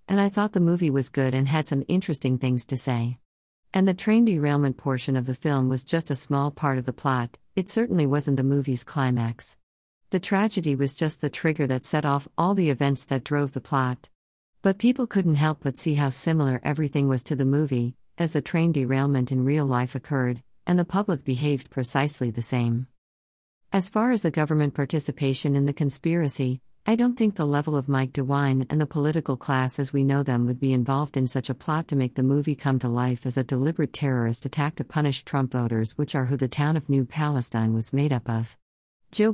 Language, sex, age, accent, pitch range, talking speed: English, female, 50-69, American, 130-155 Hz, 215 wpm